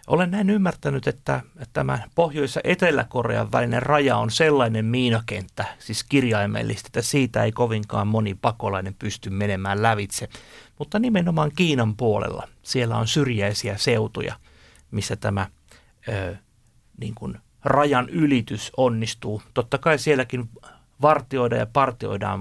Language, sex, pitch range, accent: Finnish, male, 105-130 Hz, native